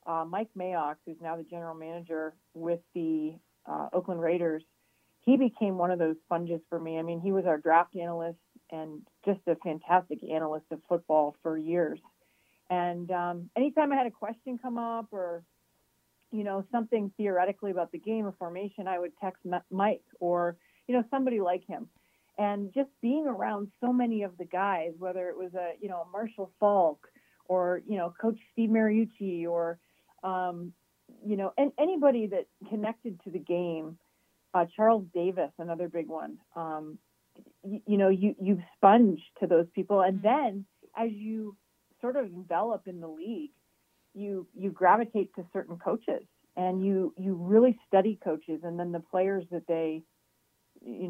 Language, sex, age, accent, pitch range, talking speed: English, female, 40-59, American, 170-210 Hz, 170 wpm